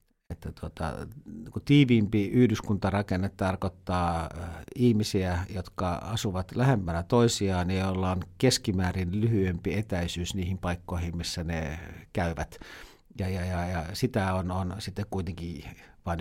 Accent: native